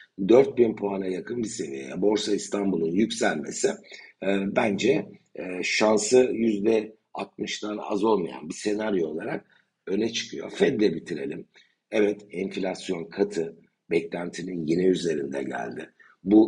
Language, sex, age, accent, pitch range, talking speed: Turkish, male, 60-79, native, 90-110 Hz, 110 wpm